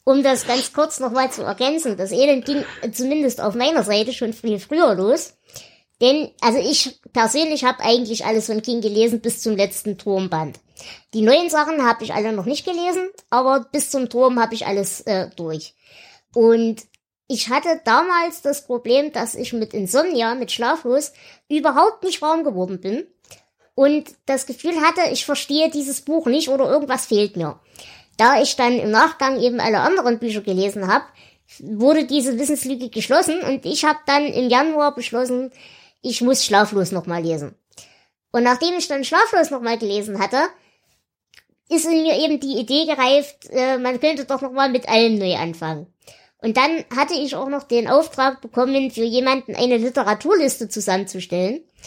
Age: 20-39